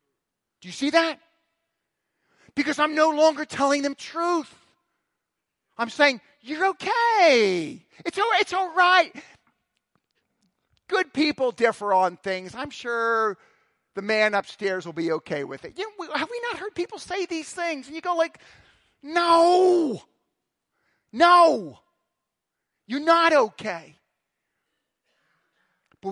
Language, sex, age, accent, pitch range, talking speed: English, male, 40-59, American, 225-345 Hz, 125 wpm